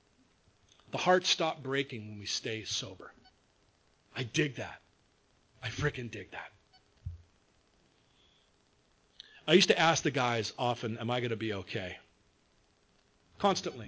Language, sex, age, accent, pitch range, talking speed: English, male, 40-59, American, 125-165 Hz, 125 wpm